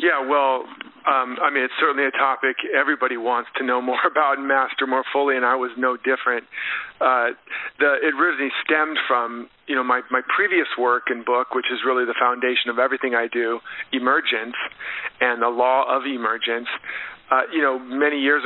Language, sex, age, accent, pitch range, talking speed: English, male, 50-69, American, 120-135 Hz, 190 wpm